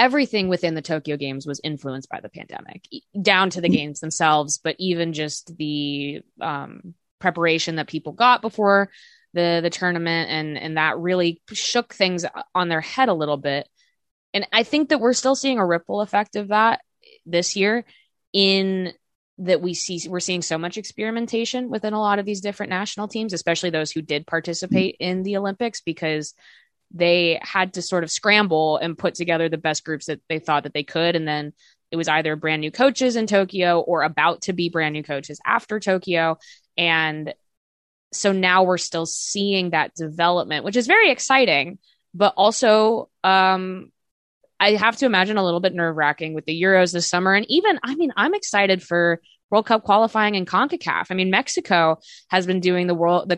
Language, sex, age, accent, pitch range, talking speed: English, female, 20-39, American, 160-205 Hz, 190 wpm